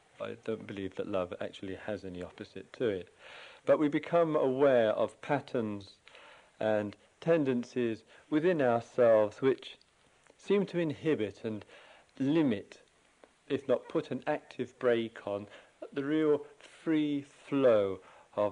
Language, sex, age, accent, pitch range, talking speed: English, male, 50-69, British, 105-145 Hz, 125 wpm